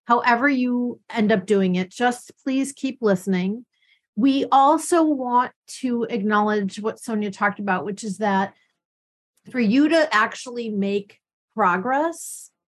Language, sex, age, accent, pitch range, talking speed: English, female, 40-59, American, 200-260 Hz, 130 wpm